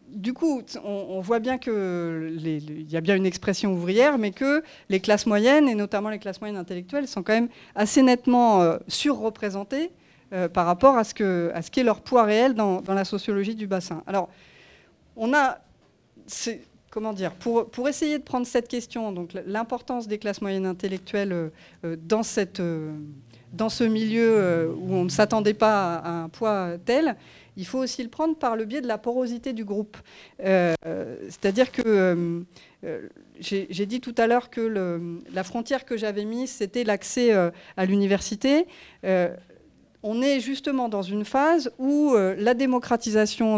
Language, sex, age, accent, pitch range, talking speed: French, female, 40-59, French, 195-250 Hz, 180 wpm